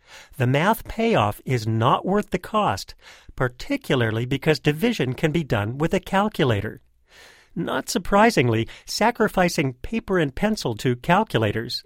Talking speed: 125 wpm